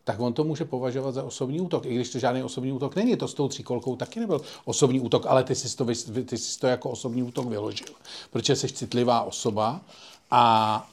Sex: male